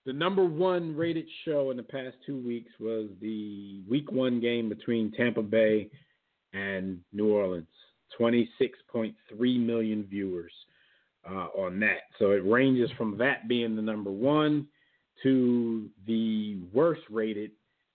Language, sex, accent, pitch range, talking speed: English, male, American, 95-130 Hz, 135 wpm